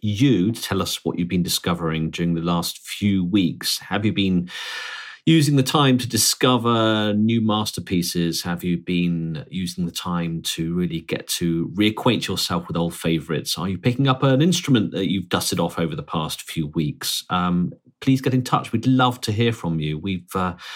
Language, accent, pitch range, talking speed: English, British, 85-115 Hz, 190 wpm